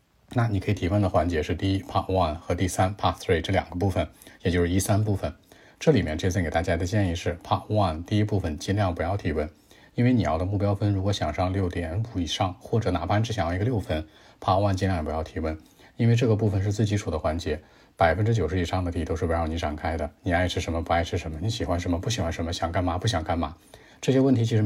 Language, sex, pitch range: Chinese, male, 85-105 Hz